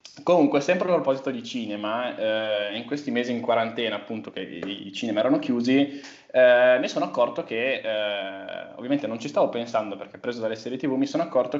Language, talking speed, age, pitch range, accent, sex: Italian, 190 wpm, 20-39, 105-135 Hz, native, male